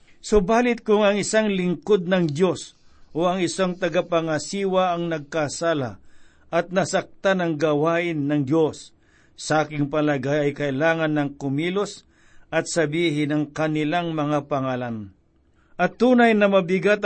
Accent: native